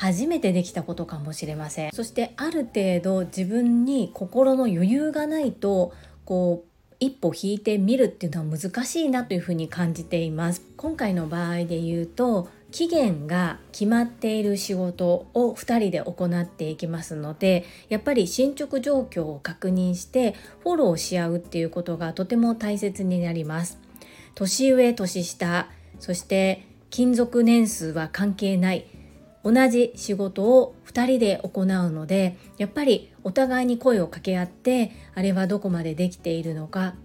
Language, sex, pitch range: Japanese, female, 175-240 Hz